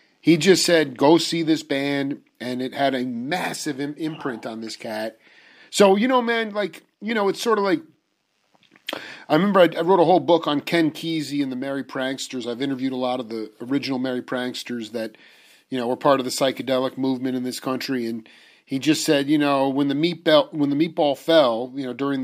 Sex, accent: male, American